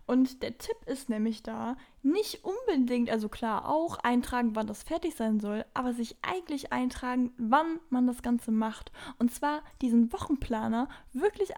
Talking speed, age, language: 160 wpm, 10-29, German